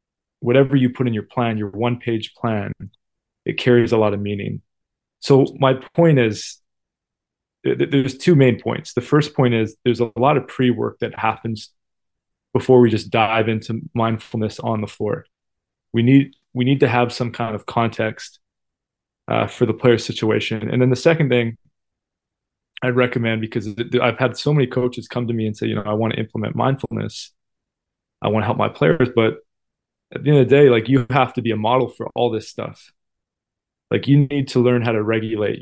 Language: English